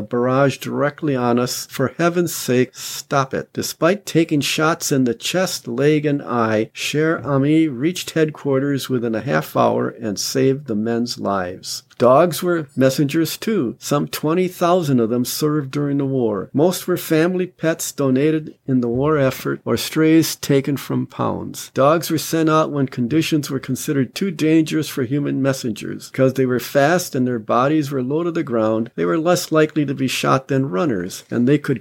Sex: male